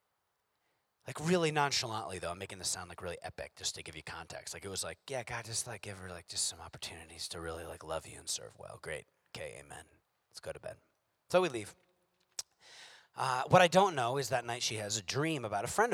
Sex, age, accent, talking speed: male, 30-49, American, 235 wpm